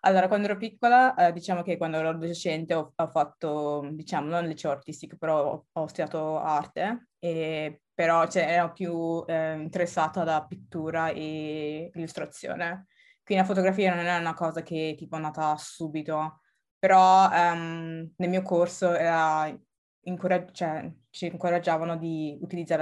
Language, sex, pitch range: Italian, female, 155-175 Hz